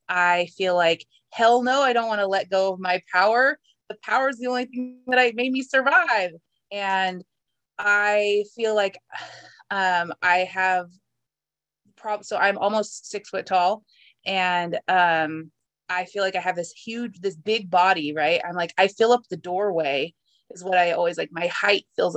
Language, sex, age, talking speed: English, female, 20-39, 180 wpm